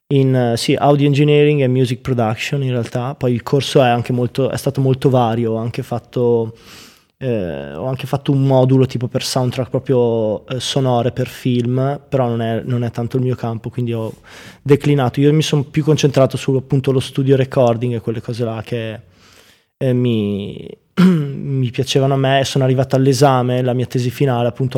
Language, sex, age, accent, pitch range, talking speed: Italian, male, 20-39, native, 120-135 Hz, 185 wpm